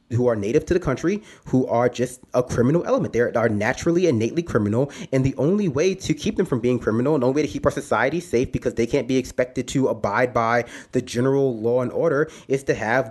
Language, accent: English, American